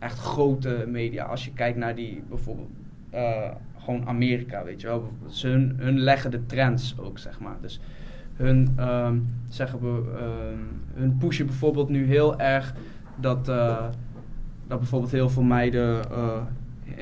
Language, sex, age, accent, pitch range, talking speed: Dutch, male, 20-39, Dutch, 120-130 Hz, 140 wpm